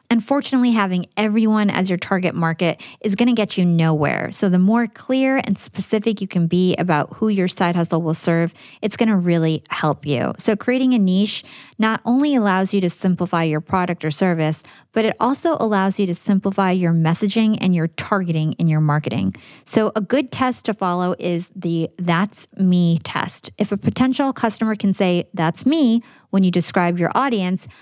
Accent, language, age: American, English, 20-39